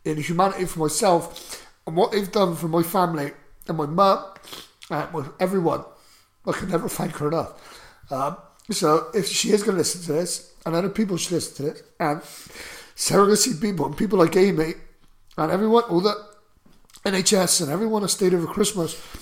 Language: English